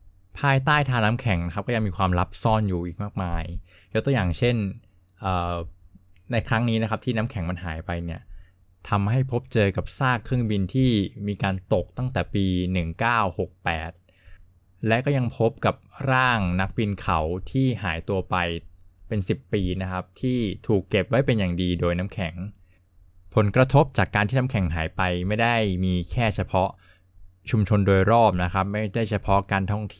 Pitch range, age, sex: 90-110 Hz, 20-39, male